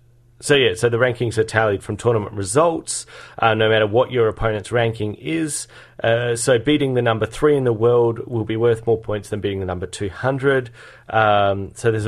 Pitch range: 105-120 Hz